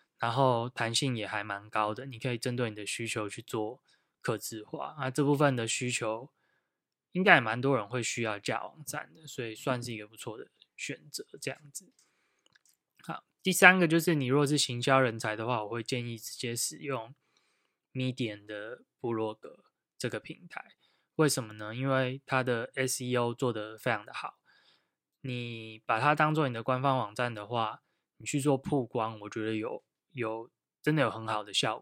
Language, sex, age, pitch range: Chinese, male, 10-29, 115-140 Hz